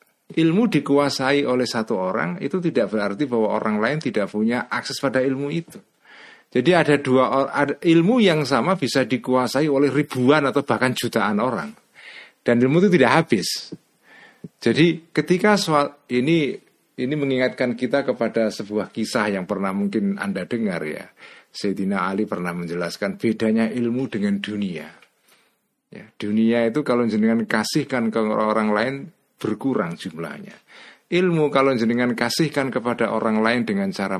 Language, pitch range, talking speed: Indonesian, 110-145 Hz, 140 wpm